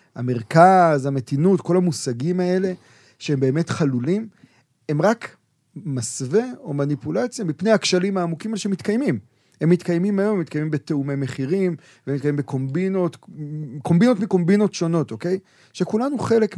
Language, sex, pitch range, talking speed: Hebrew, male, 135-185 Hz, 120 wpm